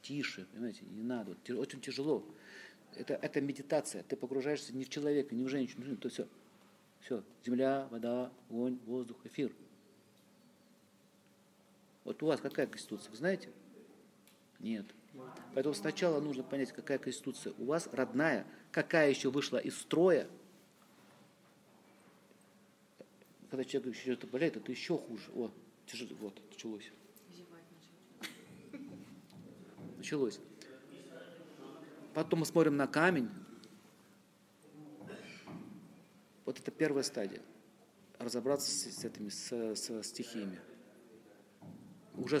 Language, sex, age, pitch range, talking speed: Russian, male, 50-69, 125-155 Hz, 110 wpm